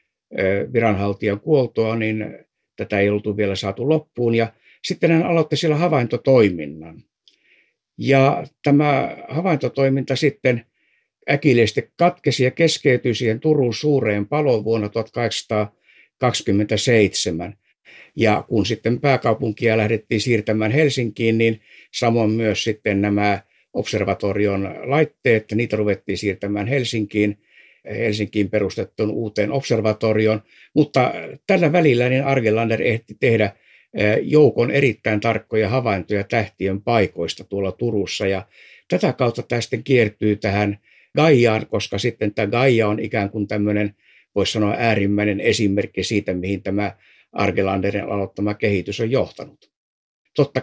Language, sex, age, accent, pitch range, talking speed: Finnish, male, 60-79, native, 100-125 Hz, 110 wpm